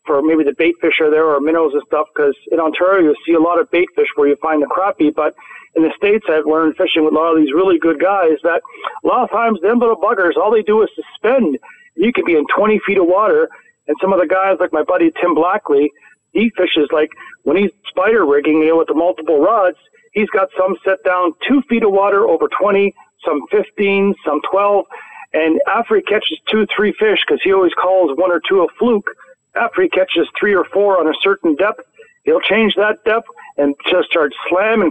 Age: 40-59